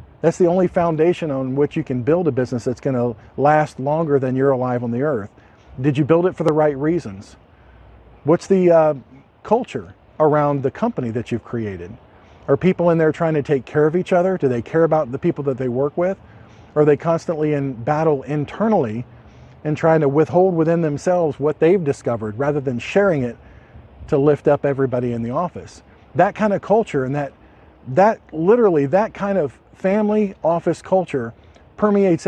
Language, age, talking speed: English, 50-69, 190 wpm